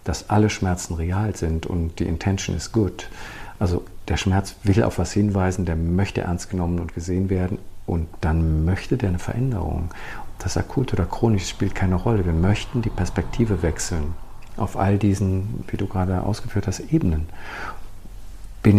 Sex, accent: male, German